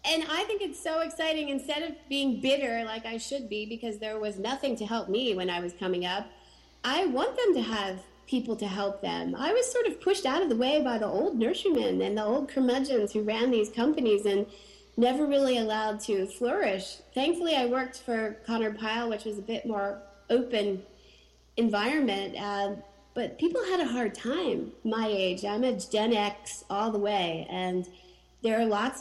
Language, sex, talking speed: English, female, 195 wpm